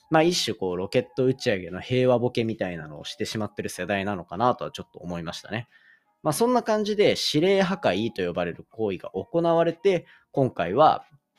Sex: male